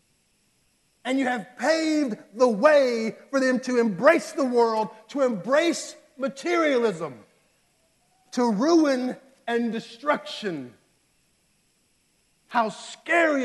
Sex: male